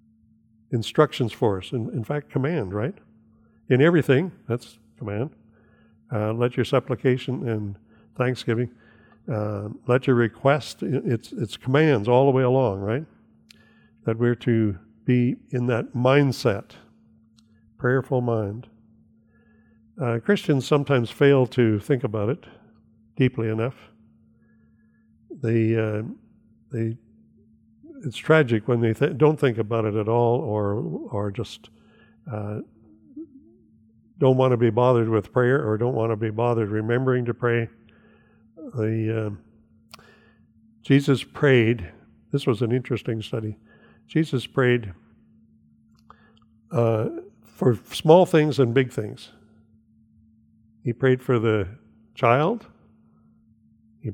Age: 60-79